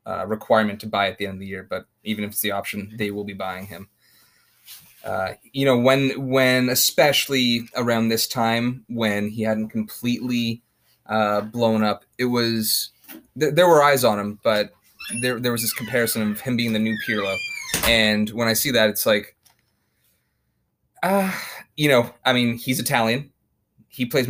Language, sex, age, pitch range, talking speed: English, male, 20-39, 105-125 Hz, 180 wpm